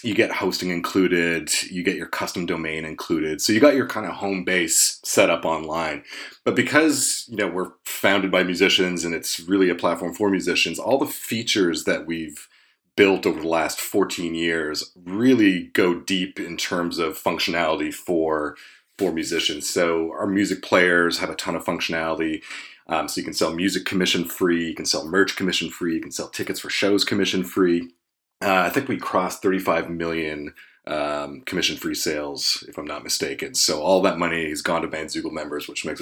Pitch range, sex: 85-110 Hz, male